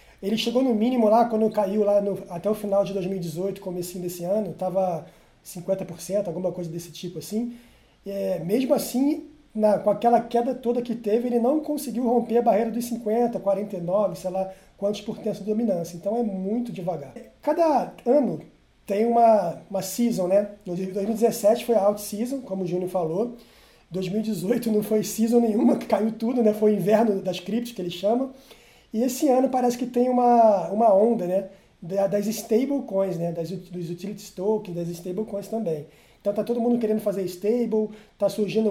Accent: Brazilian